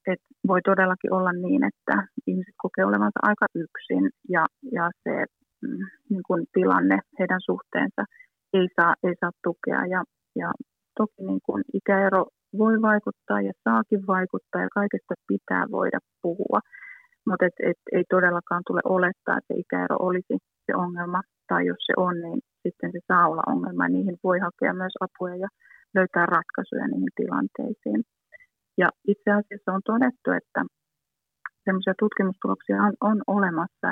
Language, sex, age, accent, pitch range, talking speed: Finnish, female, 30-49, native, 180-210 Hz, 145 wpm